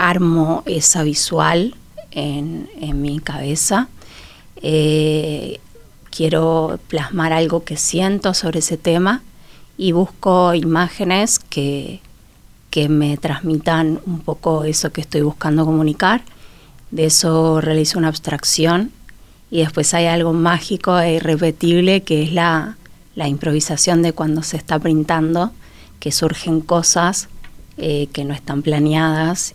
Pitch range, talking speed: 155-175 Hz, 120 wpm